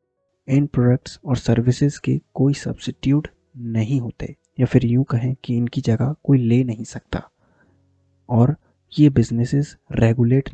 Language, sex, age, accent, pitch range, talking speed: Hindi, male, 20-39, native, 115-140 Hz, 135 wpm